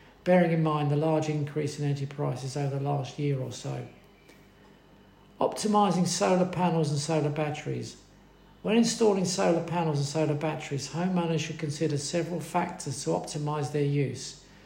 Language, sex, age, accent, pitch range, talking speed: English, male, 50-69, British, 145-170 Hz, 150 wpm